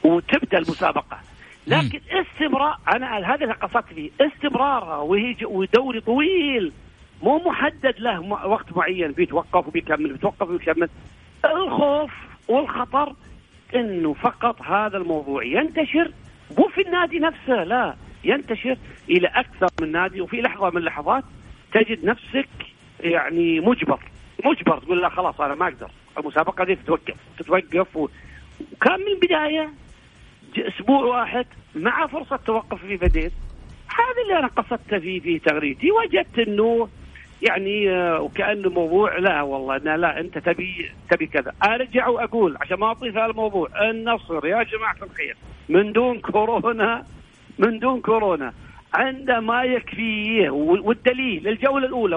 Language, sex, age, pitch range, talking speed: Arabic, male, 50-69, 180-265 Hz, 125 wpm